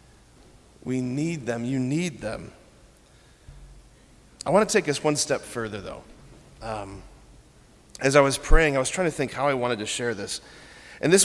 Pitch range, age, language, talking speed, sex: 120-150 Hz, 30-49, English, 175 wpm, male